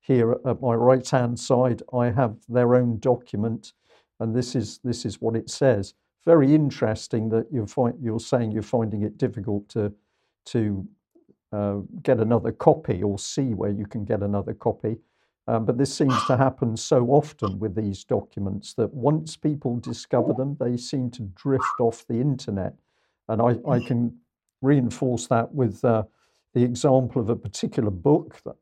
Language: English